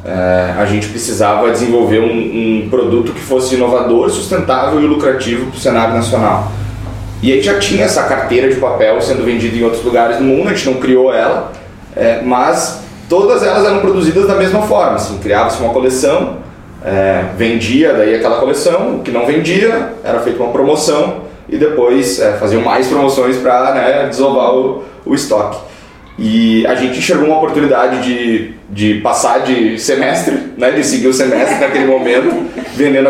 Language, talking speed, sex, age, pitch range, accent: Portuguese, 170 wpm, male, 20-39, 110-135 Hz, Brazilian